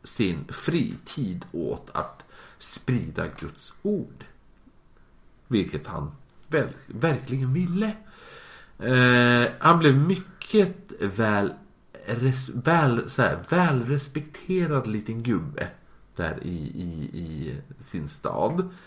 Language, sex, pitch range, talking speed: Swedish, male, 110-165 Hz, 100 wpm